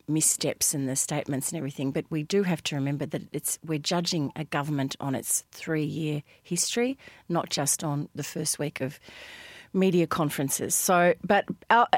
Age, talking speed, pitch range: 40-59, 170 wpm, 145-175 Hz